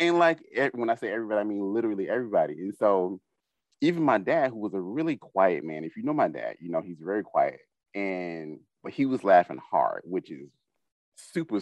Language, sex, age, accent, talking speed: English, male, 30-49, American, 205 wpm